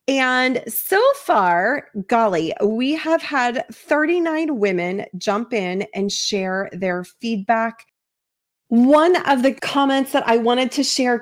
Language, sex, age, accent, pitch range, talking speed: English, female, 30-49, American, 205-275 Hz, 130 wpm